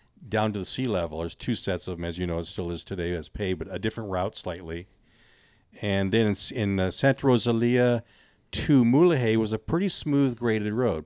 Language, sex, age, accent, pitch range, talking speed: English, male, 50-69, American, 95-110 Hz, 210 wpm